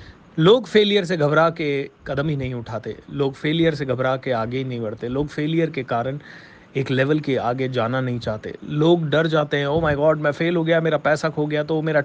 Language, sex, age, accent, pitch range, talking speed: Hindi, male, 30-49, native, 130-160 Hz, 230 wpm